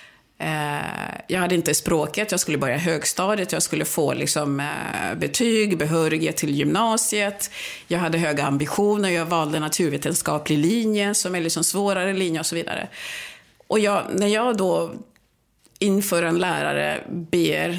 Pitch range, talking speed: 160-200 Hz, 125 wpm